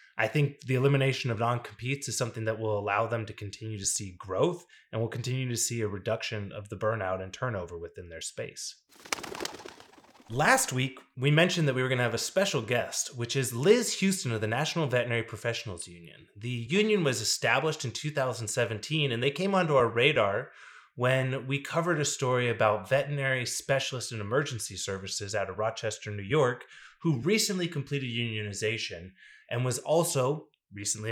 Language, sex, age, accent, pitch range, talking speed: English, male, 30-49, American, 110-140 Hz, 175 wpm